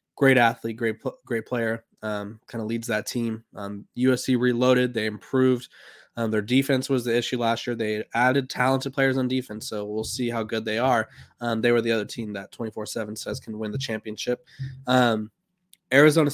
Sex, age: male, 20-39